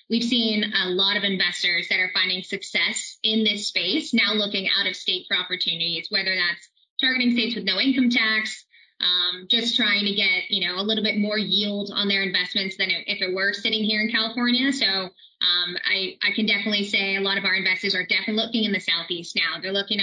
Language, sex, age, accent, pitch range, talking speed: English, female, 20-39, American, 190-225 Hz, 220 wpm